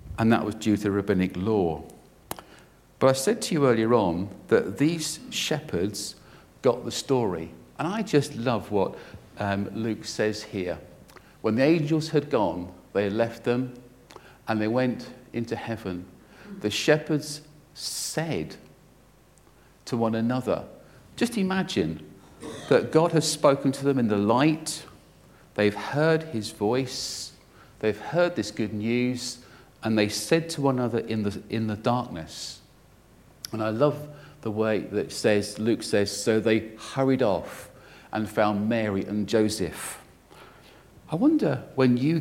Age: 50-69